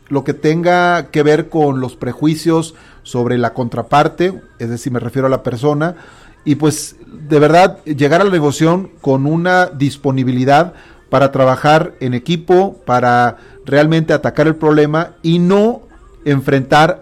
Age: 40-59